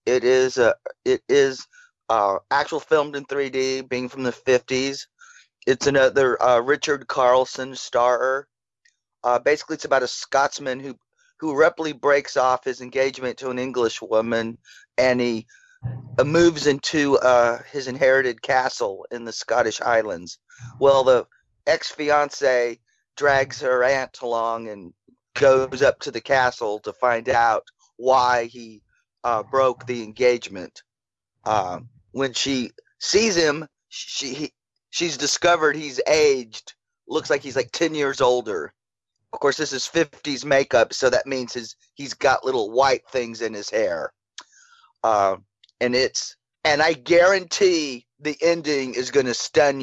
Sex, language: male, English